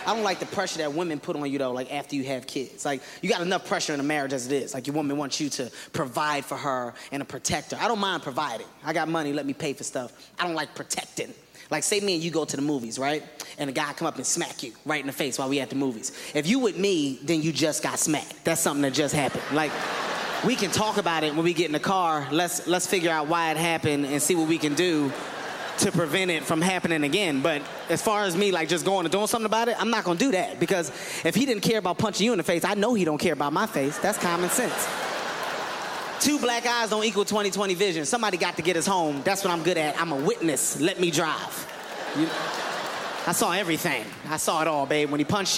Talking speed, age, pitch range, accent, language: 270 wpm, 20-39, 145-190 Hz, American, English